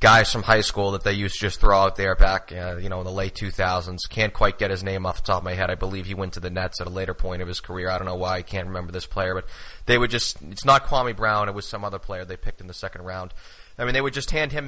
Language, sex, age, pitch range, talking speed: English, male, 20-39, 100-130 Hz, 325 wpm